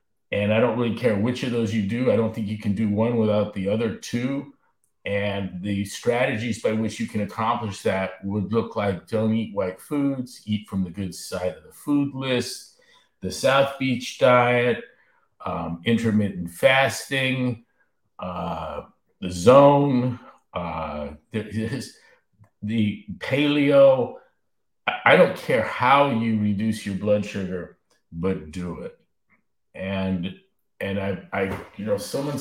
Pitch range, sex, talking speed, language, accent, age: 100-130 Hz, male, 150 wpm, English, American, 50-69